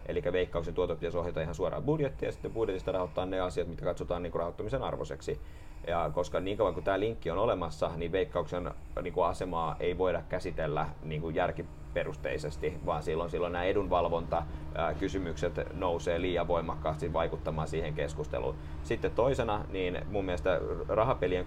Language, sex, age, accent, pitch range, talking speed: Finnish, male, 30-49, native, 75-90 Hz, 140 wpm